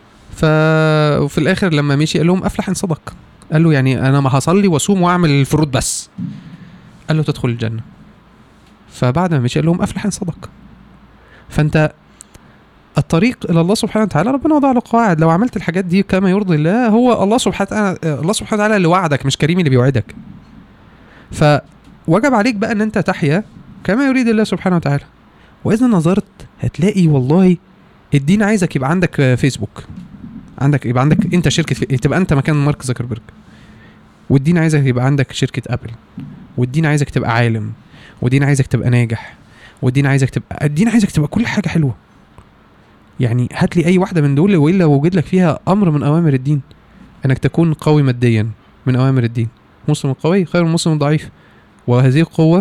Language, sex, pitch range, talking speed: Arabic, male, 135-190 Hz, 165 wpm